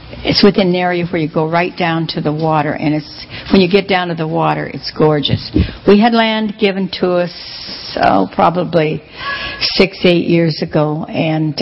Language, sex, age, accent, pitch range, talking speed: English, female, 60-79, American, 155-180 Hz, 185 wpm